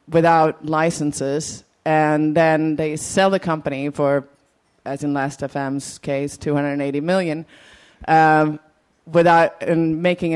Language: English